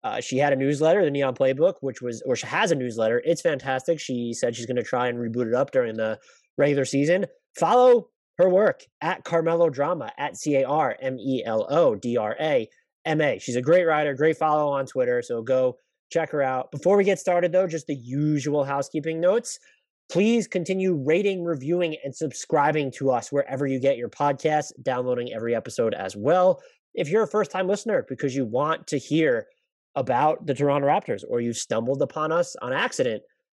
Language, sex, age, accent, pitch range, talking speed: English, male, 20-39, American, 130-180 Hz, 200 wpm